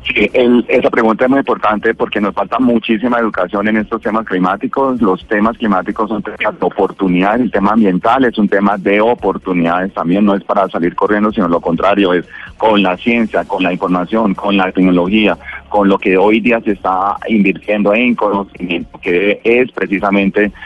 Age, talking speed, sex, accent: 30-49, 180 wpm, male, Colombian